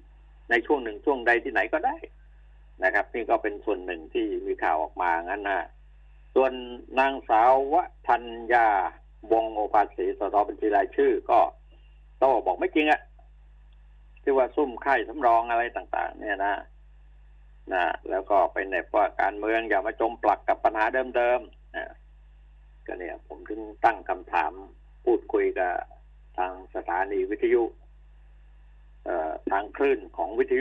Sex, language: male, Thai